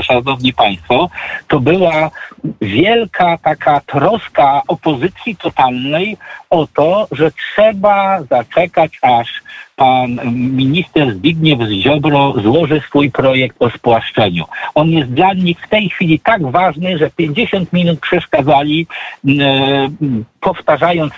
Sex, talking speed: male, 110 wpm